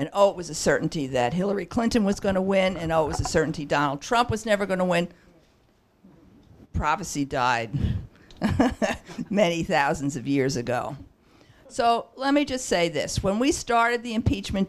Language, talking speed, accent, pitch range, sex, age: English, 180 wpm, American, 165-245 Hz, female, 50-69